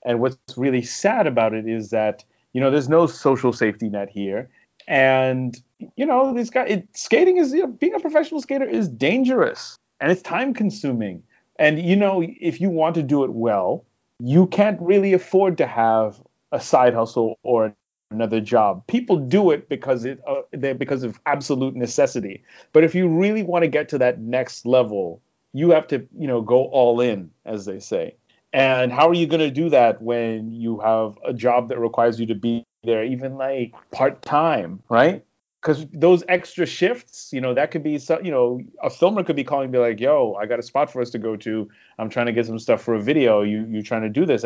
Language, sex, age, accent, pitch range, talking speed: English, male, 30-49, American, 115-165 Hz, 215 wpm